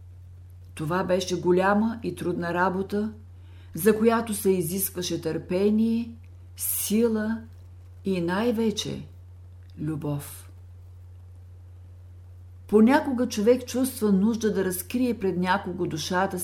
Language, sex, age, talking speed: Bulgarian, female, 50-69, 90 wpm